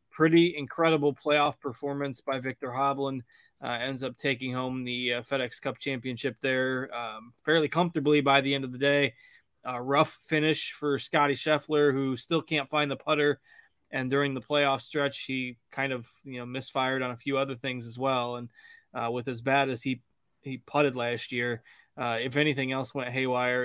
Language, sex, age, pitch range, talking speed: English, male, 20-39, 125-150 Hz, 190 wpm